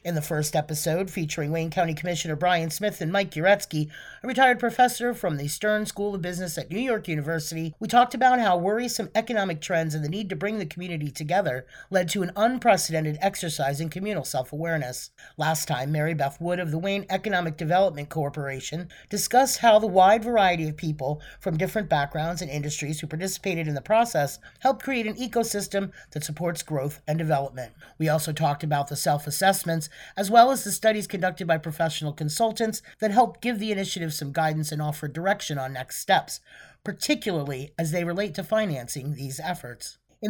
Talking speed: 185 wpm